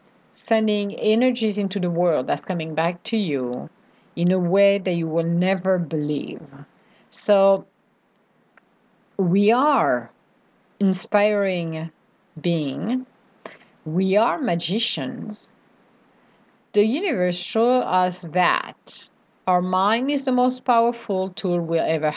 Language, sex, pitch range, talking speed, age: English, female, 175-235 Hz, 110 wpm, 50-69